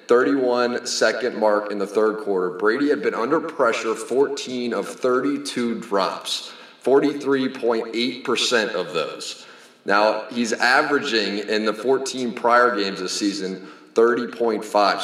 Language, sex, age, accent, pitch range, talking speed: English, male, 30-49, American, 105-135 Hz, 120 wpm